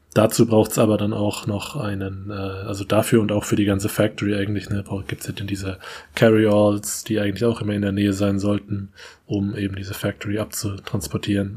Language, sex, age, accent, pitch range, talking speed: German, male, 20-39, German, 100-110 Hz, 195 wpm